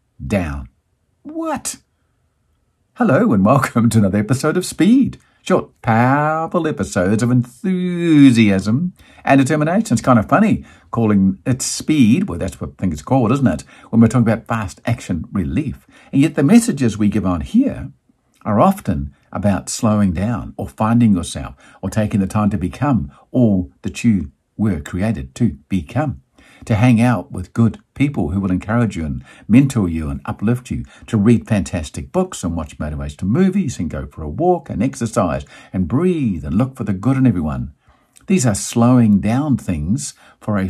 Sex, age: male, 50-69